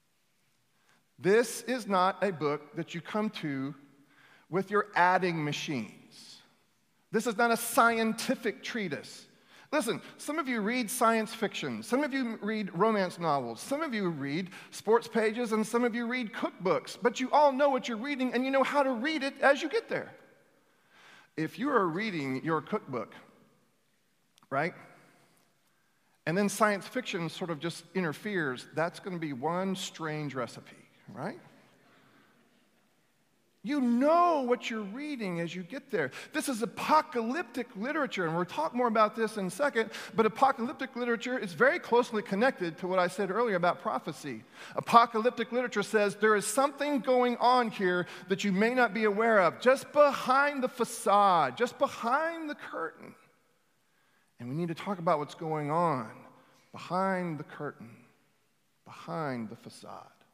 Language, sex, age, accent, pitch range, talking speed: English, male, 40-59, American, 175-255 Hz, 160 wpm